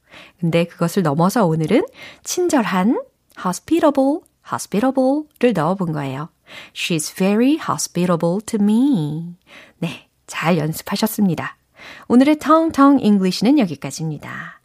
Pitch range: 170-260 Hz